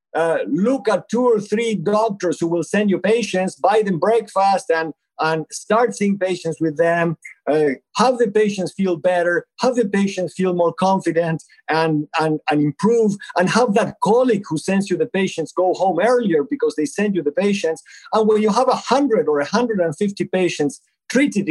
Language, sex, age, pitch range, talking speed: English, male, 50-69, 170-225 Hz, 180 wpm